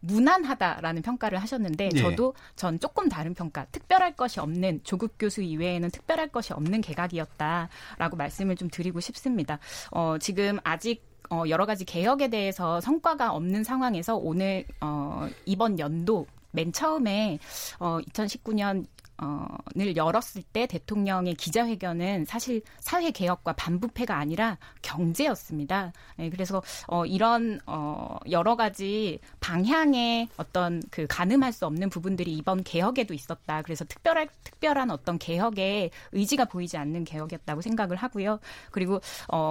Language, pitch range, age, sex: Korean, 170-230 Hz, 20-39, female